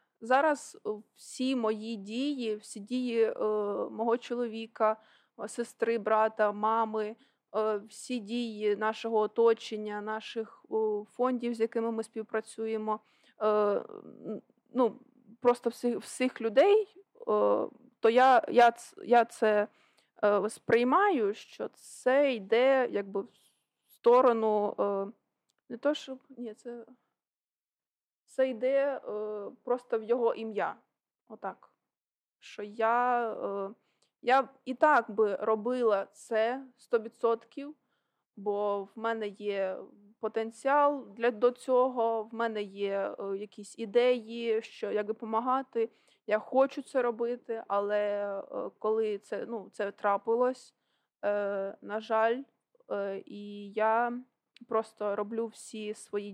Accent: native